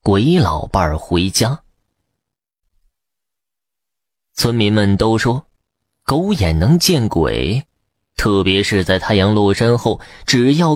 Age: 20-39